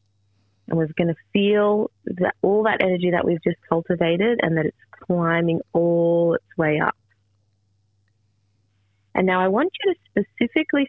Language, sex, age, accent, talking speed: English, female, 30-49, Australian, 150 wpm